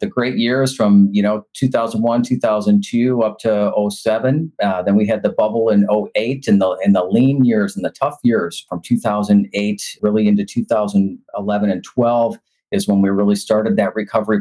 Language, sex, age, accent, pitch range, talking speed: English, male, 40-59, American, 100-120 Hz, 180 wpm